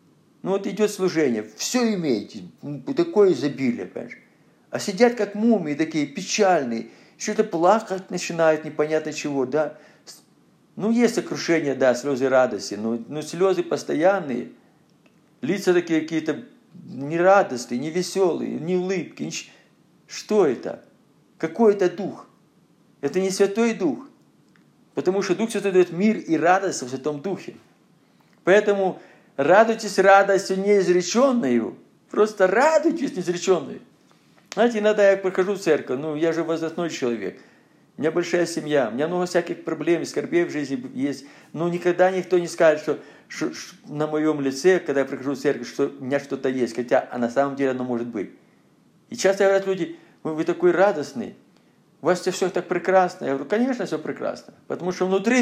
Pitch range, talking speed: 150-195 Hz, 150 wpm